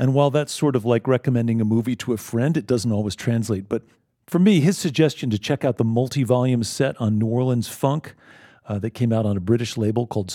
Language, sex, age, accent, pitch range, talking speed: English, male, 40-59, American, 110-140 Hz, 230 wpm